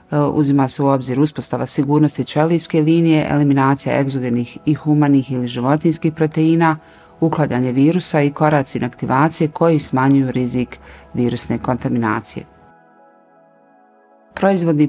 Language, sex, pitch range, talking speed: Croatian, female, 135-160 Hz, 105 wpm